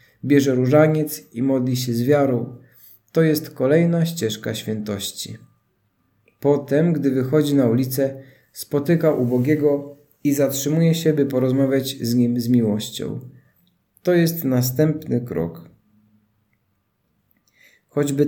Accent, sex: native, male